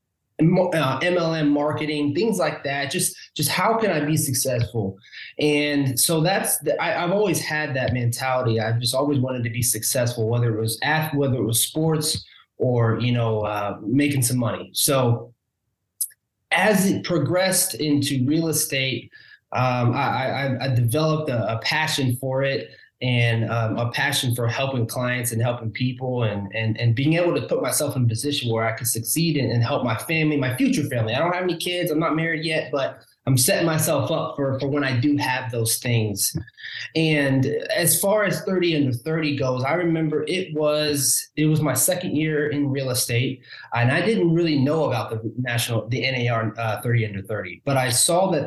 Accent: American